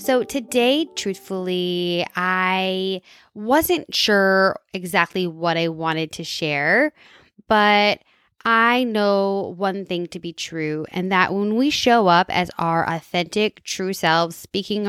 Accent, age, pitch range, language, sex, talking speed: American, 10-29, 170-205 Hz, English, female, 130 wpm